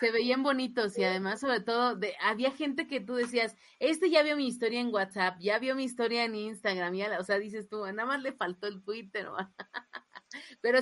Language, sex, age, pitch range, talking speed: Spanish, female, 30-49, 195-250 Hz, 200 wpm